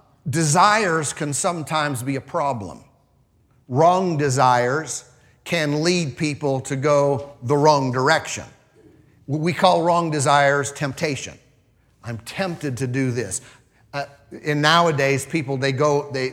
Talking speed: 120 wpm